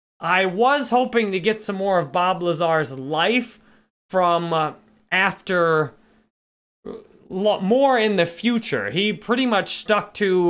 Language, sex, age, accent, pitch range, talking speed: English, male, 30-49, American, 150-190 Hz, 125 wpm